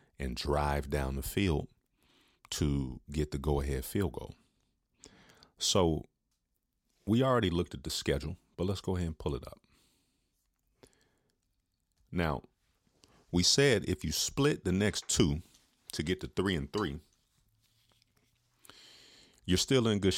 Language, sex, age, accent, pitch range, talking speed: English, male, 40-59, American, 70-85 Hz, 135 wpm